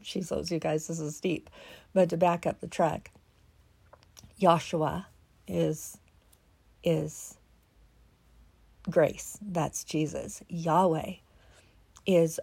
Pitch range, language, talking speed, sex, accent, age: 155-185 Hz, English, 95 wpm, female, American, 50-69